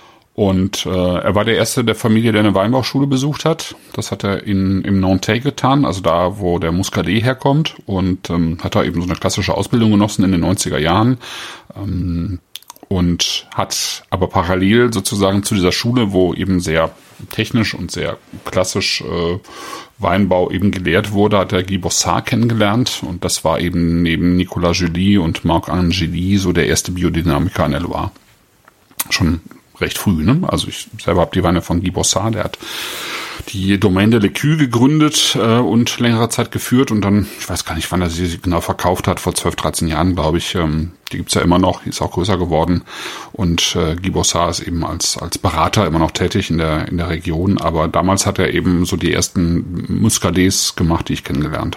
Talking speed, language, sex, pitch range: 195 wpm, German, male, 85-105 Hz